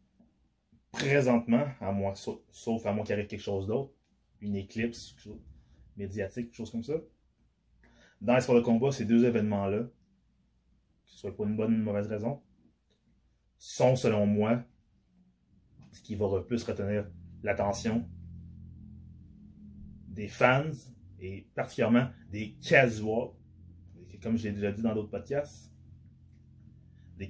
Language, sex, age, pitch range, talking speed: French, male, 20-39, 100-120 Hz, 135 wpm